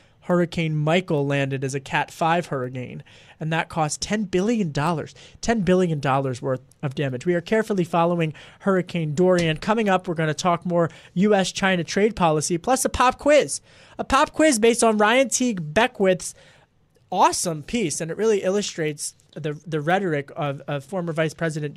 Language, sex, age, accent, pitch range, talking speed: English, male, 30-49, American, 155-210 Hz, 165 wpm